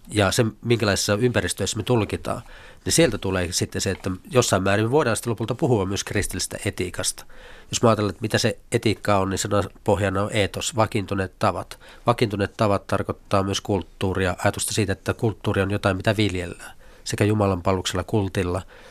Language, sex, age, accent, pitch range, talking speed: Finnish, male, 40-59, native, 95-115 Hz, 170 wpm